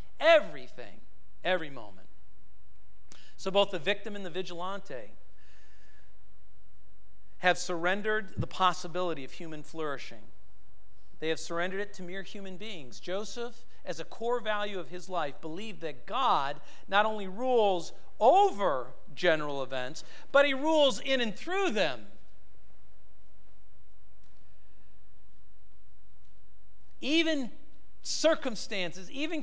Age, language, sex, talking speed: 50-69, English, male, 105 wpm